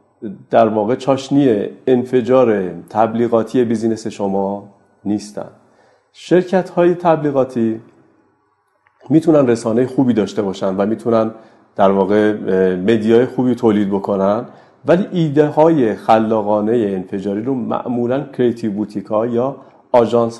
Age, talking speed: 40-59, 105 wpm